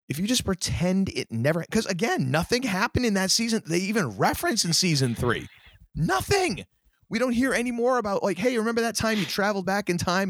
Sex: male